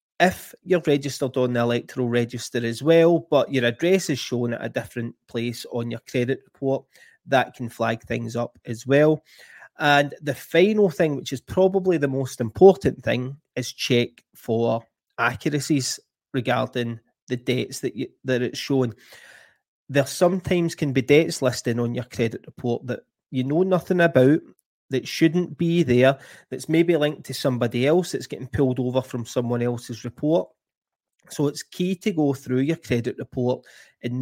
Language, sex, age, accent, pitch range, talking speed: English, male, 30-49, British, 120-150 Hz, 165 wpm